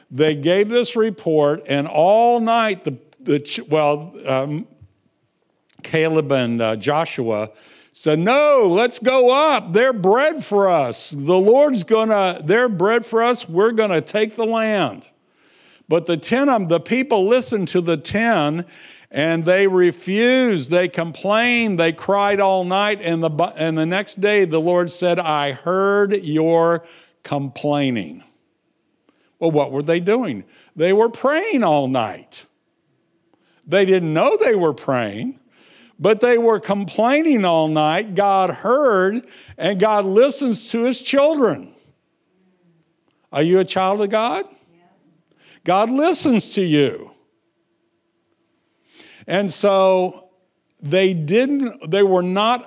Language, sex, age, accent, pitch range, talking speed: English, male, 60-79, American, 160-220 Hz, 135 wpm